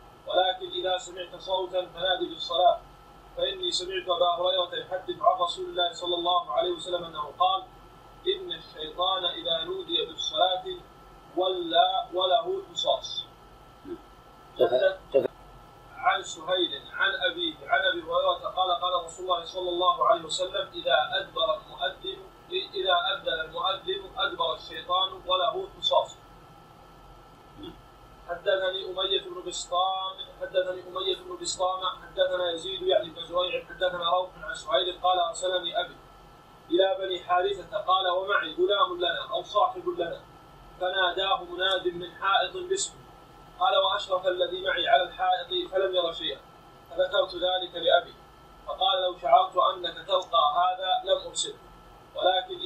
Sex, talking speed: male, 125 wpm